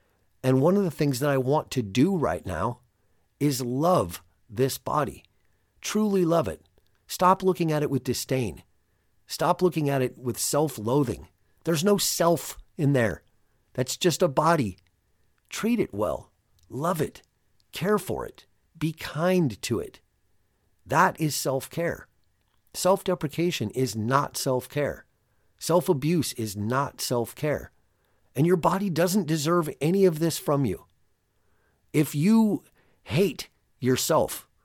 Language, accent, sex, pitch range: English, American, male, 110-170 Hz